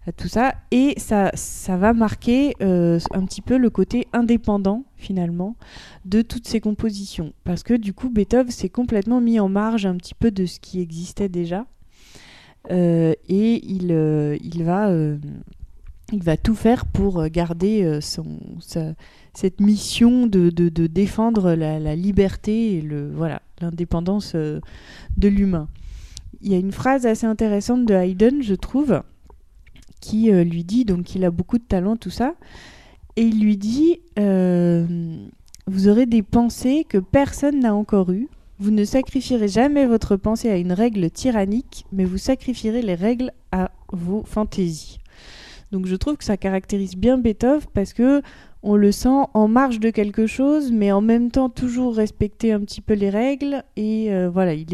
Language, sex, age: French, female, 30-49